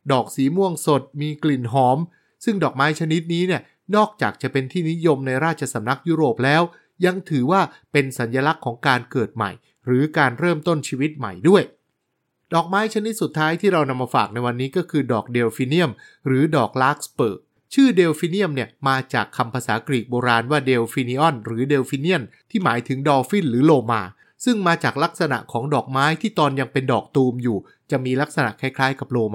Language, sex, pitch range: English, male, 130-170 Hz